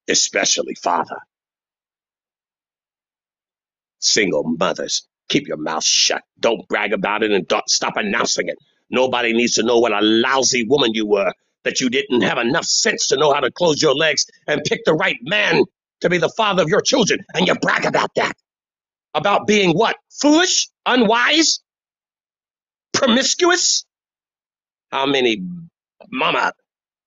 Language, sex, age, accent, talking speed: English, male, 50-69, American, 145 wpm